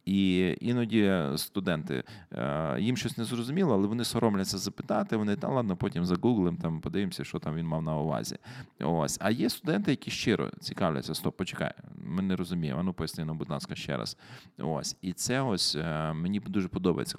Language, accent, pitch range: Ukrainian, native, 85-105 Hz